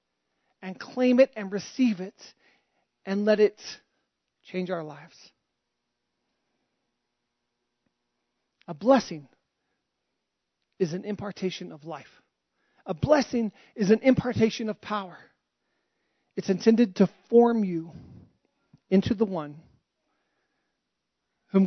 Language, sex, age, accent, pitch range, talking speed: English, male, 40-59, American, 165-210 Hz, 95 wpm